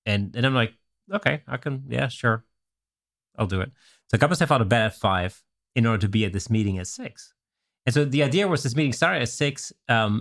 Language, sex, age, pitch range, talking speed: English, male, 30-49, 105-130 Hz, 240 wpm